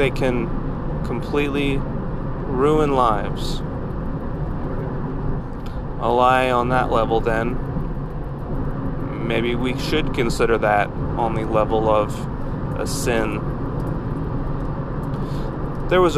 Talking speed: 90 wpm